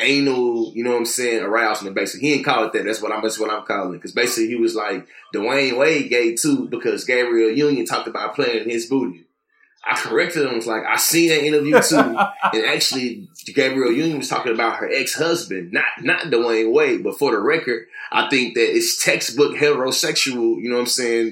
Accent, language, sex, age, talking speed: American, English, male, 20-39, 220 wpm